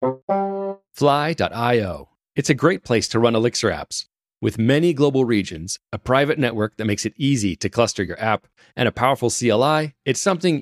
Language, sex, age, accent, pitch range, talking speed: English, male, 30-49, American, 100-145 Hz, 170 wpm